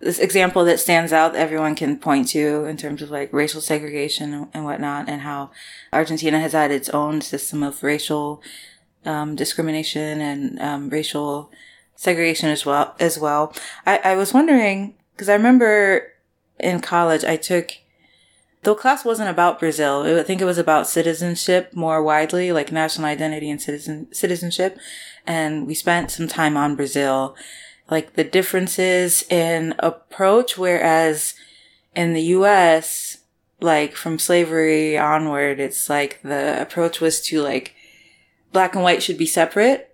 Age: 20-39